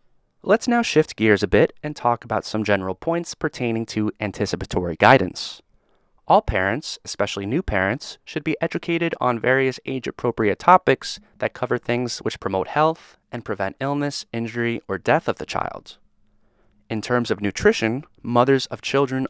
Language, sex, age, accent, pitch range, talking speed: English, male, 20-39, American, 100-130 Hz, 155 wpm